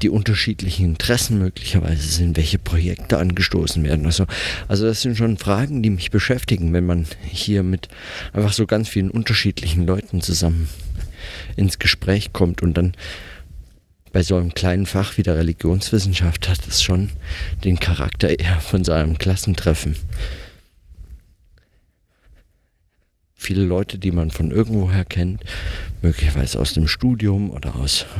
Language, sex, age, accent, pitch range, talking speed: German, male, 50-69, German, 80-95 Hz, 140 wpm